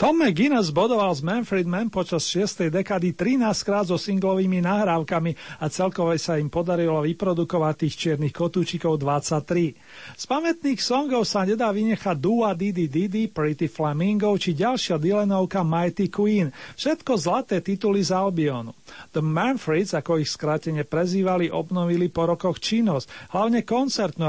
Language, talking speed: Slovak, 135 wpm